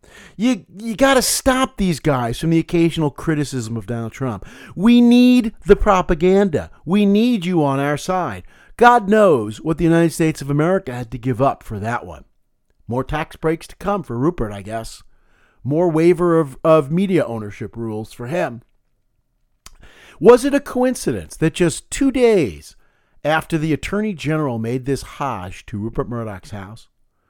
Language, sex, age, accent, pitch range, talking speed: English, male, 50-69, American, 115-175 Hz, 165 wpm